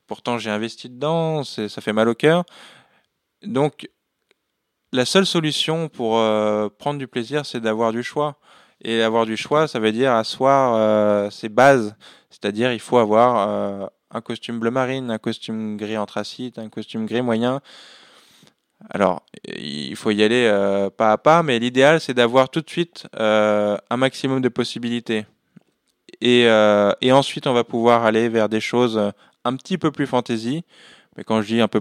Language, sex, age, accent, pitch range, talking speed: French, male, 20-39, French, 105-130 Hz, 175 wpm